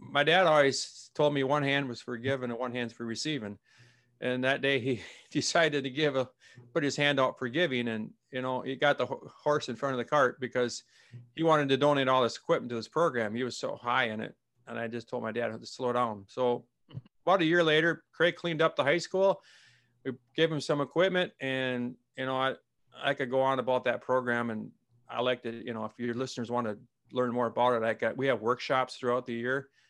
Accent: American